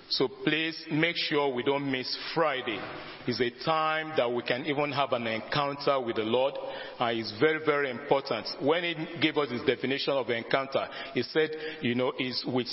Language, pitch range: English, 125-155 Hz